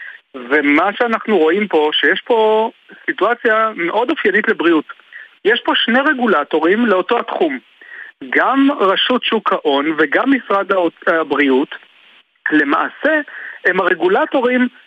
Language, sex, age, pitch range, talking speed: Hebrew, male, 40-59, 170-245 Hz, 105 wpm